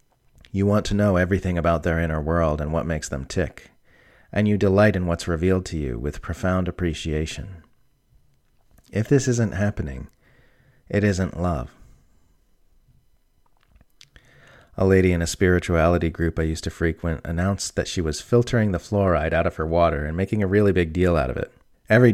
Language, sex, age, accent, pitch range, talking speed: English, male, 40-59, American, 80-100 Hz, 170 wpm